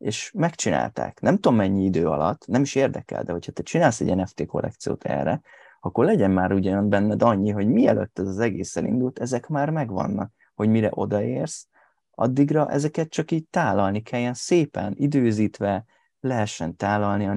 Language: Hungarian